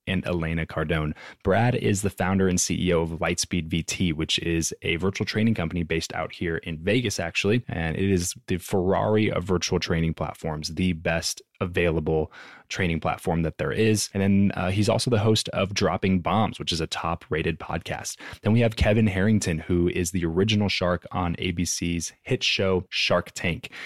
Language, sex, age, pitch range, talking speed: English, male, 20-39, 85-100 Hz, 180 wpm